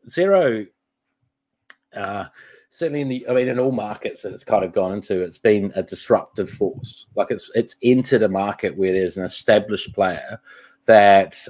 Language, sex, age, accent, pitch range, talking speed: English, male, 30-49, Australian, 100-130 Hz, 170 wpm